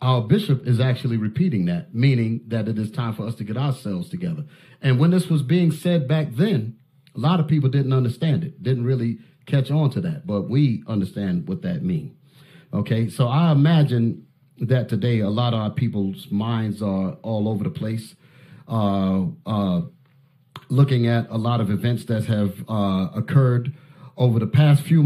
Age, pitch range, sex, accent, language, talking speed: 40-59, 110-150 Hz, male, American, English, 185 wpm